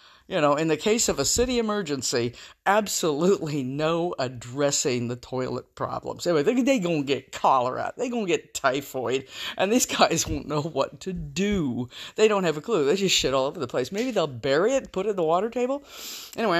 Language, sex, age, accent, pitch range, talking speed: English, female, 50-69, American, 150-210 Hz, 210 wpm